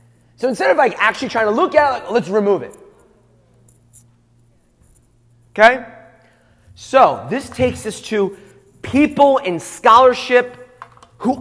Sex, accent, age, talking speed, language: male, American, 30-49, 120 wpm, English